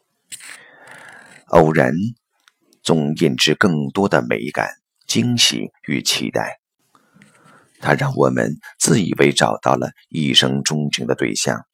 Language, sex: Chinese, male